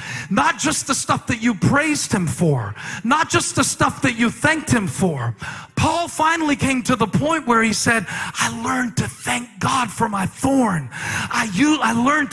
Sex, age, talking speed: male, 40-59, 180 wpm